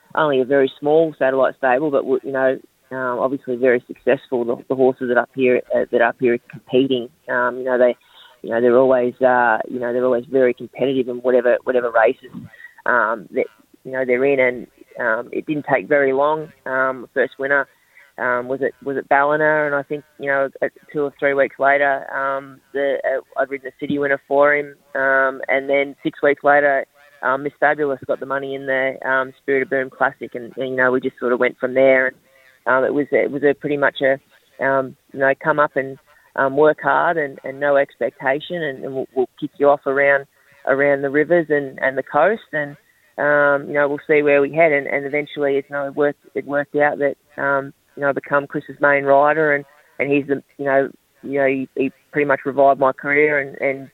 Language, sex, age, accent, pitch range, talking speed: English, female, 20-39, Australian, 130-145 Hz, 225 wpm